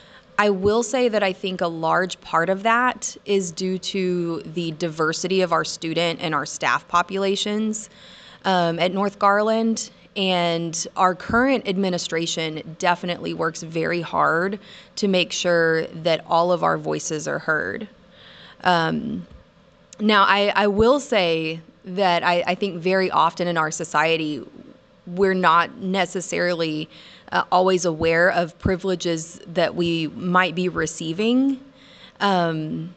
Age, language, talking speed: 20-39, English, 135 wpm